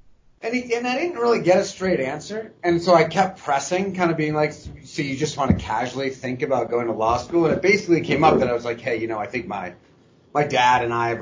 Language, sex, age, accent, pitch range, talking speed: English, male, 30-49, American, 120-155 Hz, 275 wpm